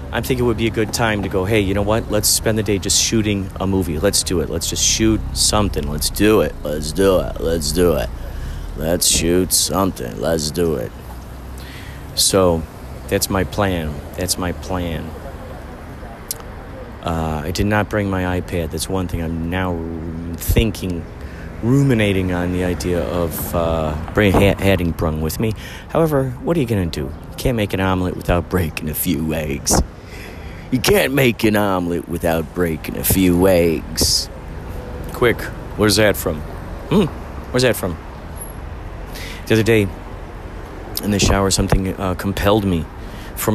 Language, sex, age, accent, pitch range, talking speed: English, male, 40-59, American, 85-110 Hz, 170 wpm